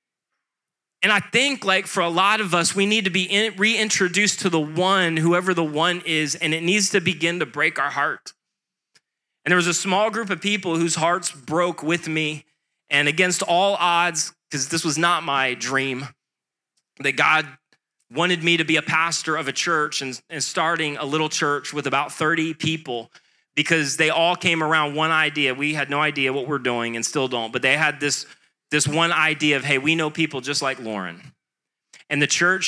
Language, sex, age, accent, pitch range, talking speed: English, male, 30-49, American, 140-170 Hz, 200 wpm